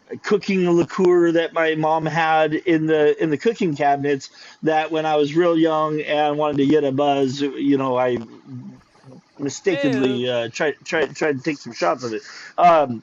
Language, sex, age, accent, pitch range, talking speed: English, male, 40-59, American, 125-160 Hz, 180 wpm